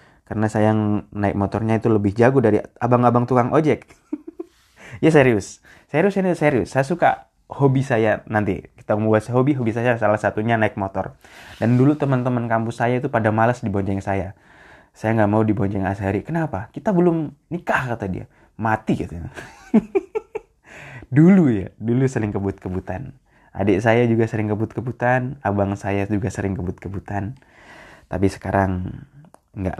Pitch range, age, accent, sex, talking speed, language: 100-140 Hz, 20-39, native, male, 145 wpm, Indonesian